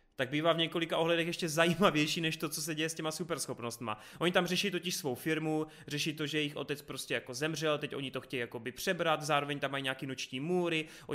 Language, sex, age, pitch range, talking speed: Czech, male, 30-49, 140-170 Hz, 225 wpm